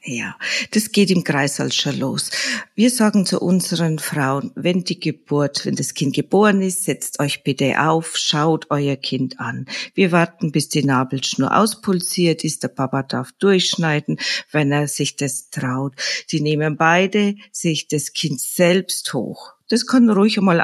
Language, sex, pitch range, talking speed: German, female, 145-195 Hz, 165 wpm